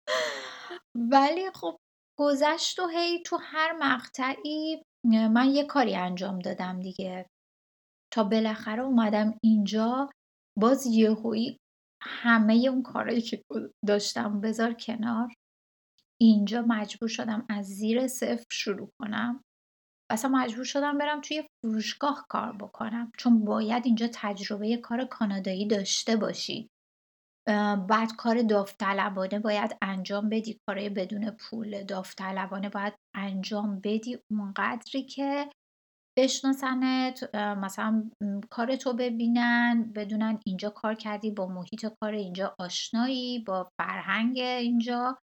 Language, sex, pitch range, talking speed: Persian, female, 205-245 Hz, 110 wpm